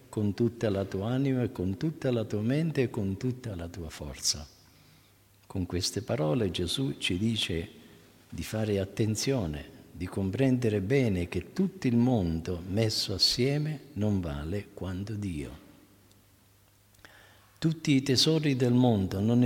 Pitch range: 95-130 Hz